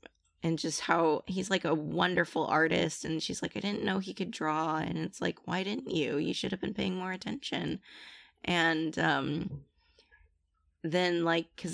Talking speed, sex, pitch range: 180 wpm, female, 145-165 Hz